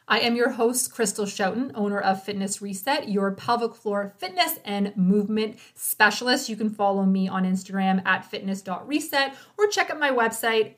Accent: American